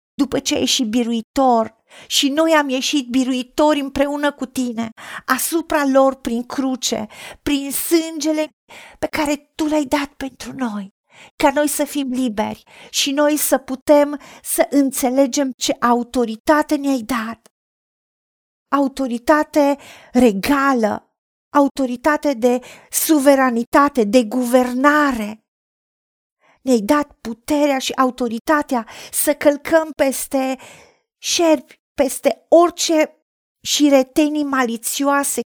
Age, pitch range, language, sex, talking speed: 40-59, 245-290 Hz, Romanian, female, 105 wpm